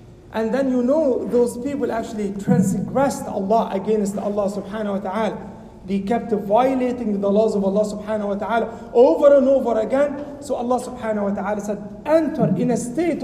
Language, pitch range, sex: English, 205-265 Hz, male